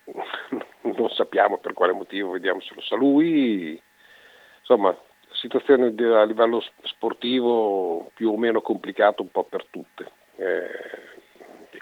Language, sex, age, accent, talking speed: Italian, male, 50-69, native, 120 wpm